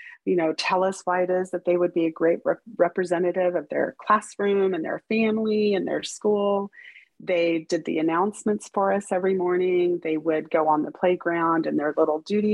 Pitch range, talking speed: 160-195 Hz, 195 wpm